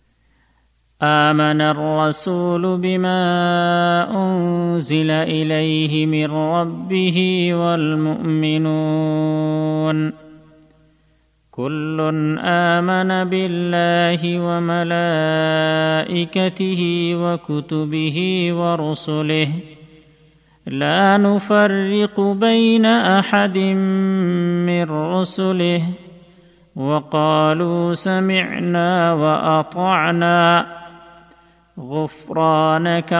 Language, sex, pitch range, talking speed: Bengali, male, 155-185 Hz, 45 wpm